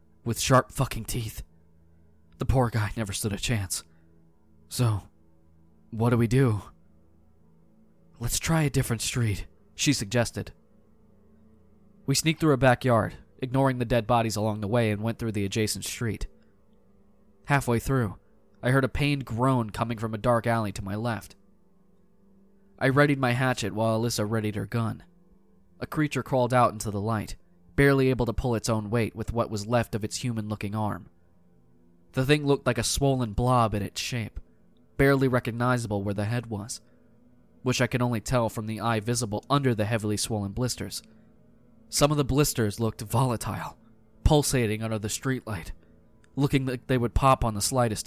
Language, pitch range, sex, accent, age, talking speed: English, 100-125 Hz, male, American, 20-39, 170 wpm